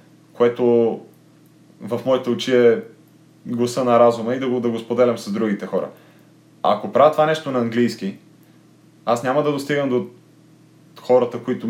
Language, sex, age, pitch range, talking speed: Bulgarian, male, 30-49, 110-145 Hz, 160 wpm